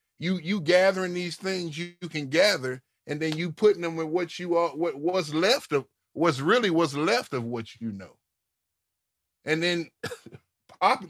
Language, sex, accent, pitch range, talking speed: English, male, American, 120-175 Hz, 180 wpm